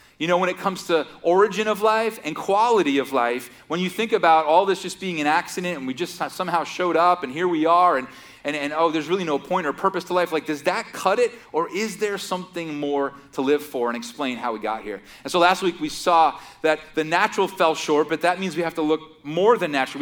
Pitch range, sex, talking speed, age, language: 150-190 Hz, male, 255 wpm, 30-49, English